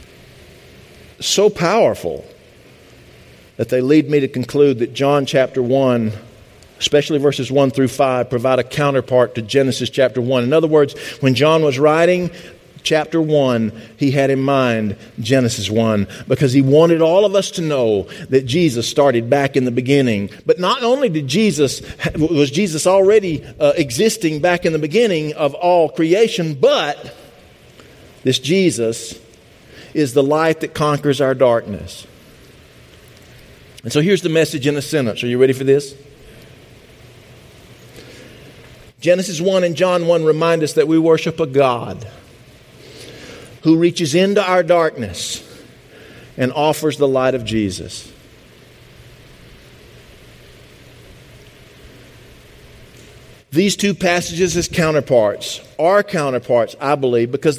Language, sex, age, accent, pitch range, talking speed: English, male, 50-69, American, 125-165 Hz, 130 wpm